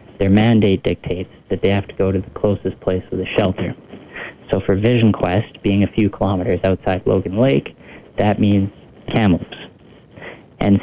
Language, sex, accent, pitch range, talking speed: English, male, American, 95-110 Hz, 165 wpm